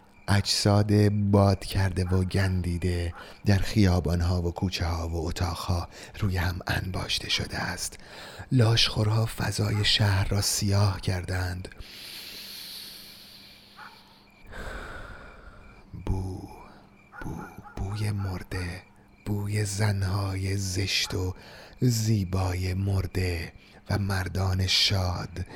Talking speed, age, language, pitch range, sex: 85 wpm, 30-49, Persian, 90-105 Hz, male